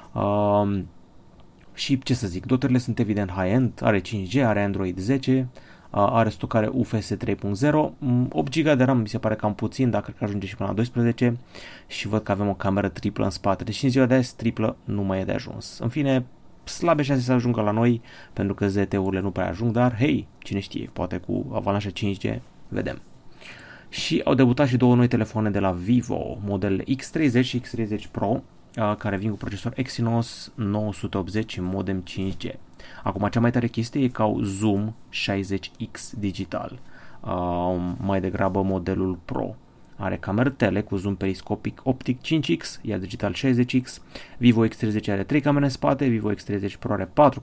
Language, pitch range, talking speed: Romanian, 100-125 Hz, 175 wpm